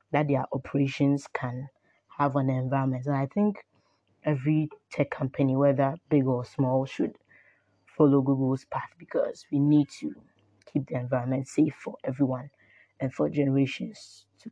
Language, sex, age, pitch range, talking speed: English, female, 20-39, 130-150 Hz, 140 wpm